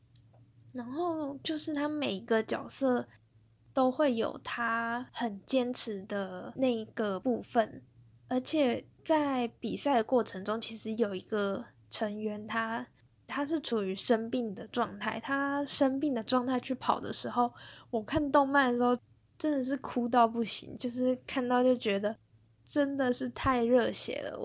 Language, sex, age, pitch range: Chinese, female, 10-29, 200-250 Hz